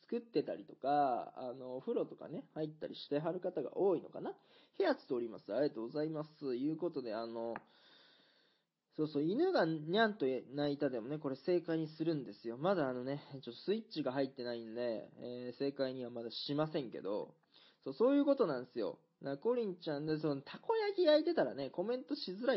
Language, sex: Japanese, male